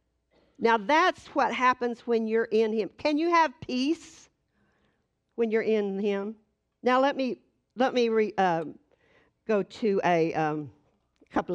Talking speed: 145 wpm